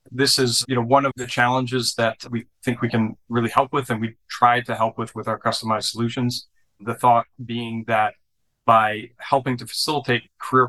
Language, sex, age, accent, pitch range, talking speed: English, male, 30-49, American, 115-130 Hz, 195 wpm